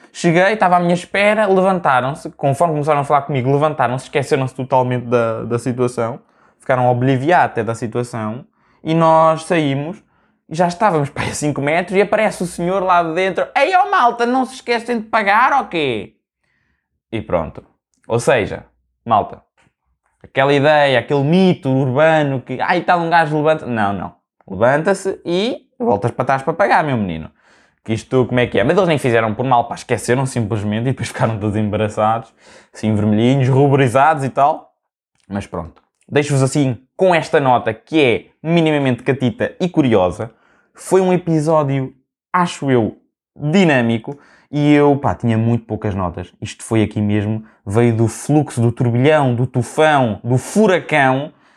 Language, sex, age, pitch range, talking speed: Portuguese, male, 20-39, 120-165 Hz, 160 wpm